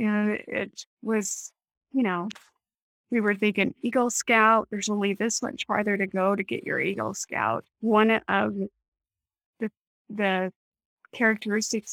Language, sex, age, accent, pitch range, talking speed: English, female, 20-39, American, 195-230 Hz, 135 wpm